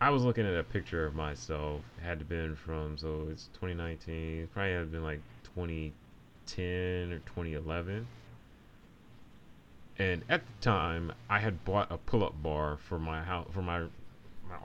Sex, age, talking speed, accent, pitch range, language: male, 30-49, 165 wpm, American, 80-105 Hz, English